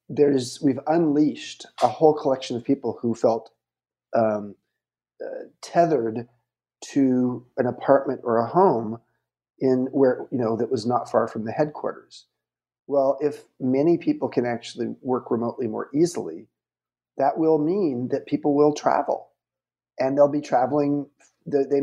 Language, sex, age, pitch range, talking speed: English, male, 40-59, 125-155 Hz, 145 wpm